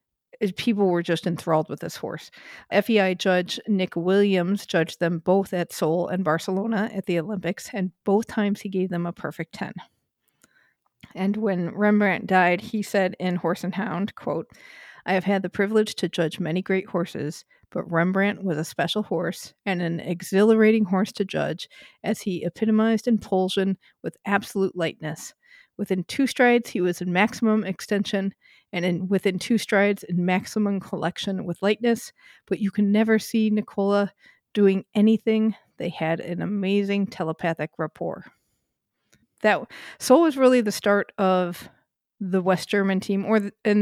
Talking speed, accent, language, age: 160 wpm, American, English, 50-69